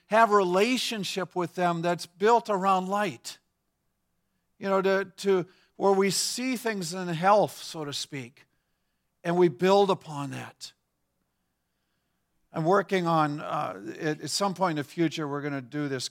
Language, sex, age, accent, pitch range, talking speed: English, male, 50-69, American, 135-180 Hz, 155 wpm